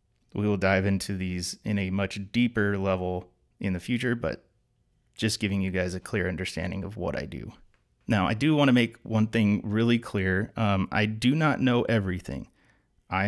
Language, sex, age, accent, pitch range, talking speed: English, male, 30-49, American, 95-110 Hz, 190 wpm